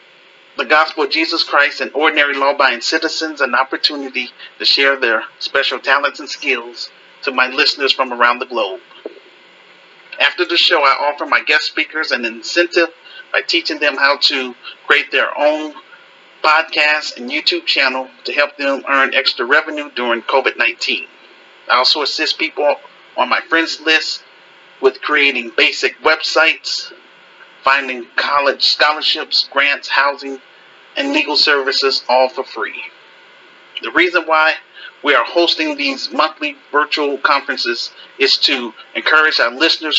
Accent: American